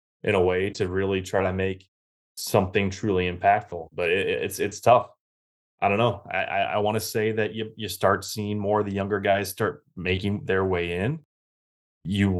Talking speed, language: 195 wpm, English